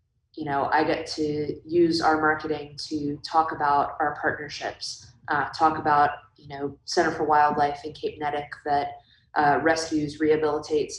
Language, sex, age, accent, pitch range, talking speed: English, female, 20-39, American, 145-160 Hz, 155 wpm